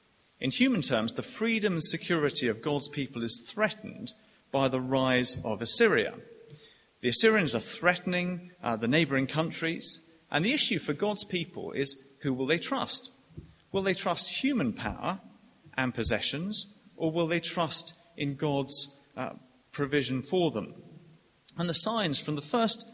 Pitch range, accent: 140-190 Hz, British